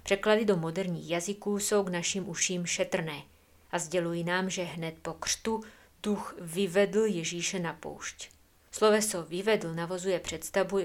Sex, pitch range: female, 170-195 Hz